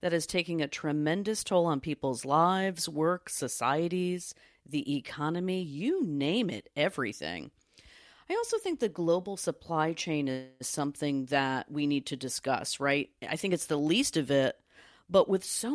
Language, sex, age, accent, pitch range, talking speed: English, female, 40-59, American, 140-185 Hz, 160 wpm